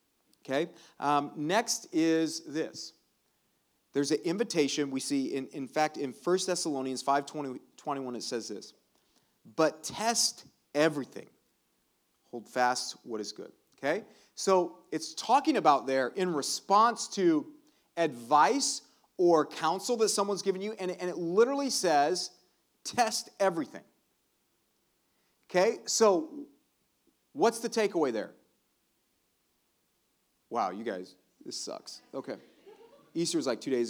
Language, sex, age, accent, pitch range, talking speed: English, male, 40-59, American, 140-215 Hz, 120 wpm